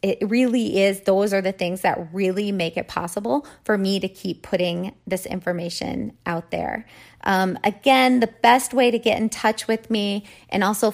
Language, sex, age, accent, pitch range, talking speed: English, female, 30-49, American, 185-215 Hz, 185 wpm